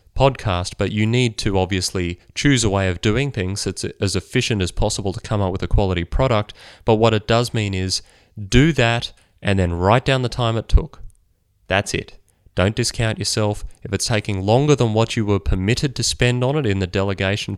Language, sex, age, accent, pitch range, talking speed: English, male, 20-39, Australian, 95-110 Hz, 210 wpm